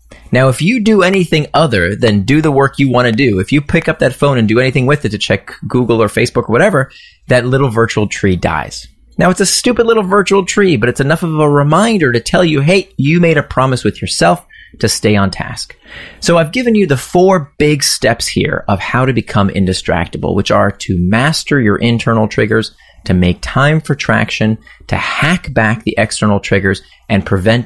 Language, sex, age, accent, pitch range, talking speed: English, male, 30-49, American, 100-145 Hz, 215 wpm